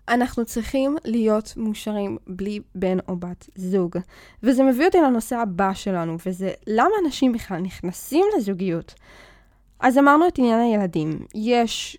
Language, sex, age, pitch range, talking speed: Hebrew, female, 10-29, 185-245 Hz, 135 wpm